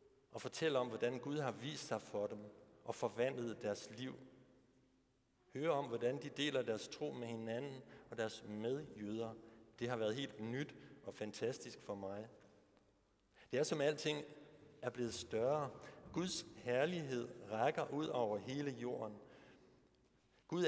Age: 60-79